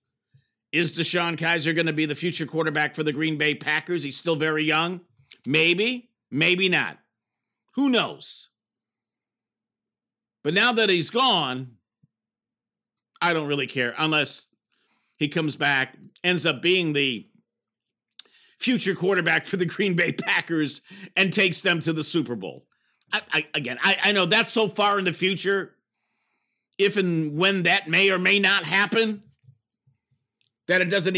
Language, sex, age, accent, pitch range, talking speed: English, male, 50-69, American, 155-200 Hz, 145 wpm